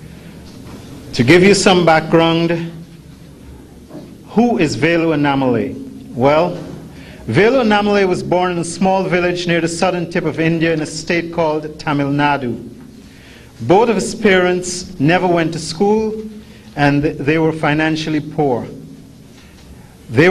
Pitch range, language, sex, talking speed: 145-175 Hz, English, male, 130 wpm